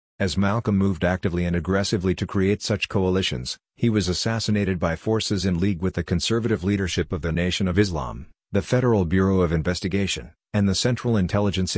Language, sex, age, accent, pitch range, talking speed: English, male, 50-69, American, 90-105 Hz, 180 wpm